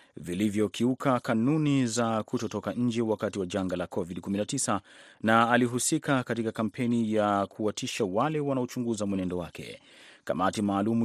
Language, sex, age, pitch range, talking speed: Swahili, male, 30-49, 105-125 Hz, 120 wpm